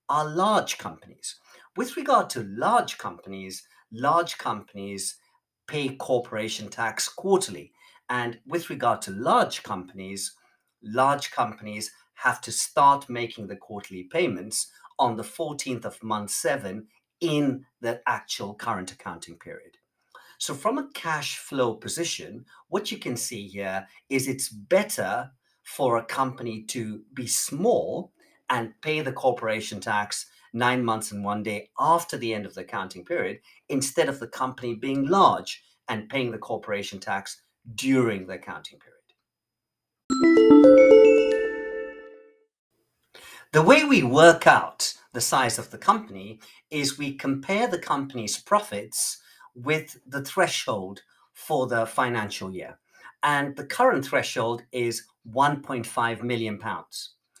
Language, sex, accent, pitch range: English, male, British, 110-165 Hz